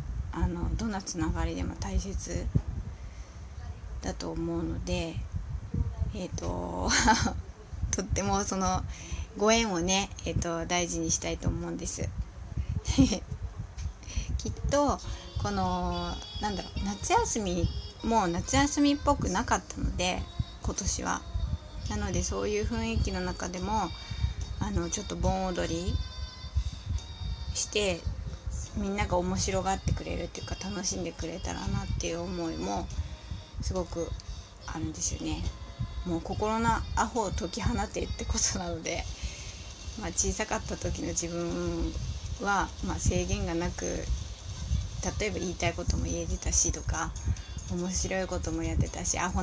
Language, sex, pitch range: Japanese, female, 80-95 Hz